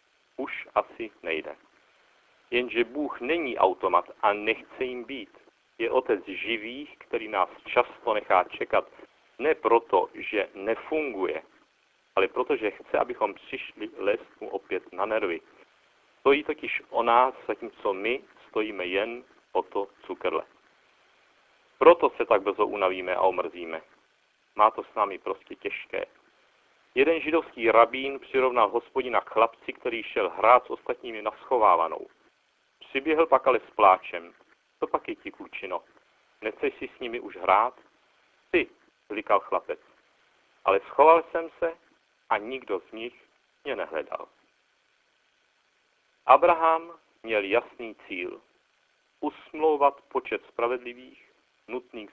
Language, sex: Czech, male